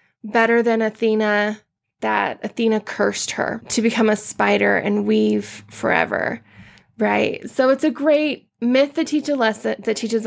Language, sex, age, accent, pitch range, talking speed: English, female, 20-39, American, 215-260 Hz, 135 wpm